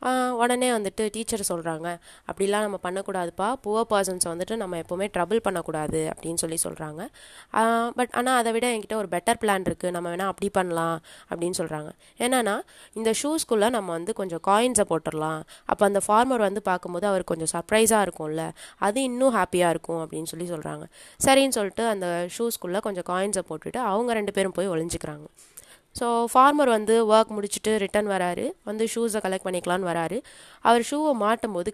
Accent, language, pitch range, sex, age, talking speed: native, Tamil, 180-230 Hz, female, 20-39, 155 wpm